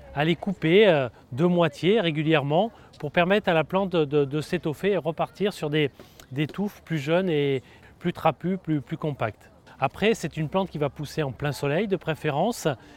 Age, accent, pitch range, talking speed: 30-49, French, 140-175 Hz, 190 wpm